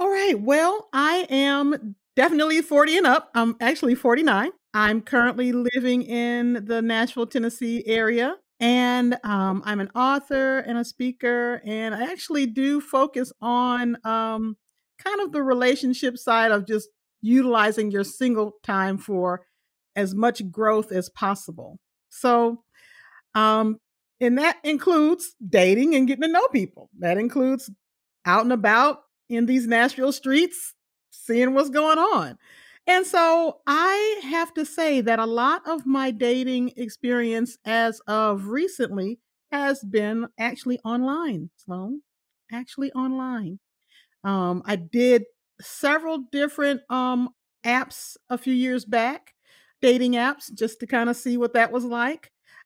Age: 40-59